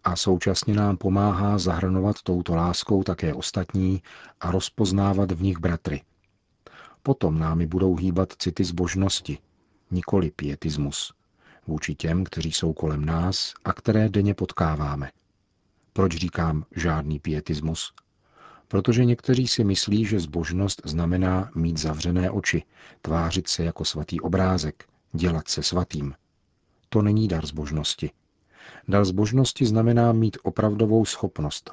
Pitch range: 85-100 Hz